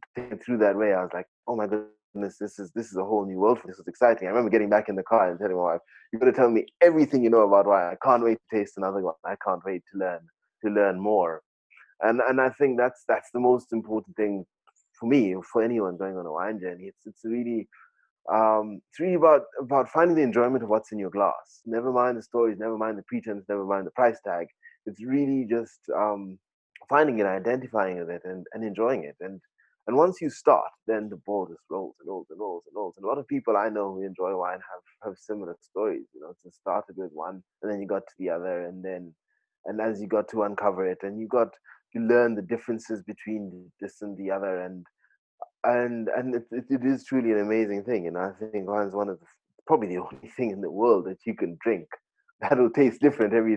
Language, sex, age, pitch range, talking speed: English, male, 20-39, 100-120 Hz, 245 wpm